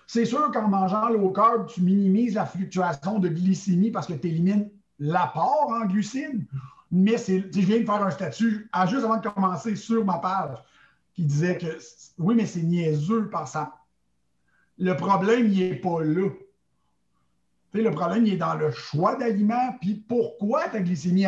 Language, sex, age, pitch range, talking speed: French, male, 60-79, 165-215 Hz, 175 wpm